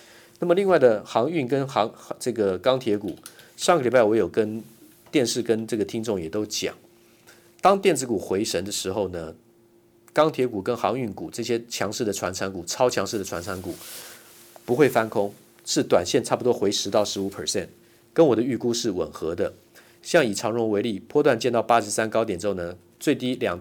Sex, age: male, 50-69